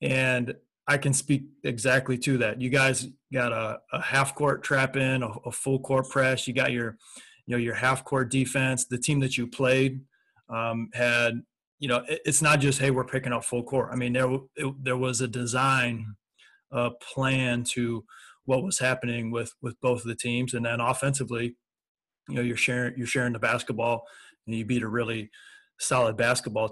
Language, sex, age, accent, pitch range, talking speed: English, male, 30-49, American, 120-140 Hz, 200 wpm